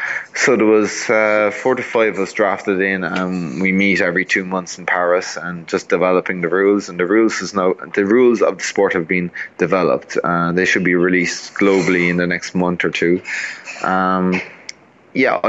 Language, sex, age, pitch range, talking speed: English, male, 20-39, 90-105 Hz, 200 wpm